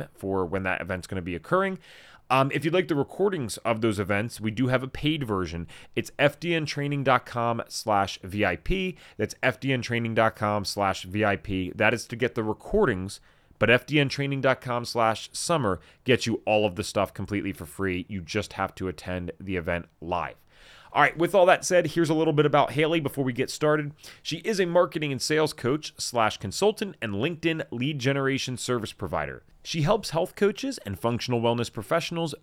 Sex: male